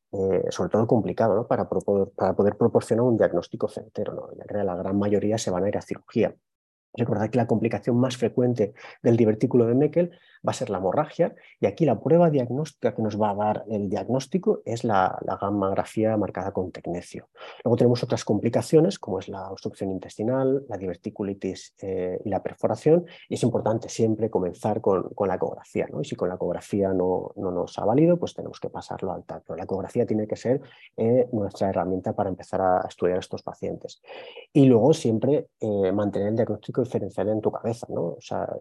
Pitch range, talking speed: 100-125 Hz, 195 wpm